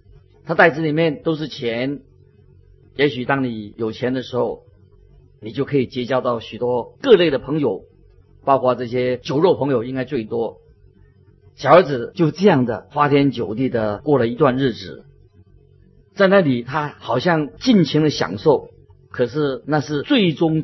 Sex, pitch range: male, 115-150 Hz